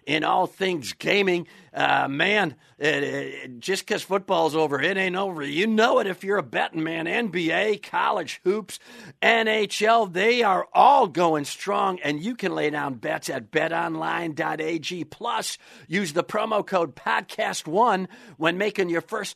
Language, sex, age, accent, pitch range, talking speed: English, male, 50-69, American, 185-260 Hz, 150 wpm